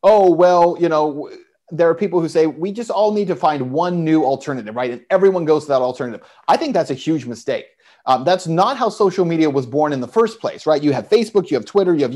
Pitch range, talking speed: 145-190 Hz, 255 wpm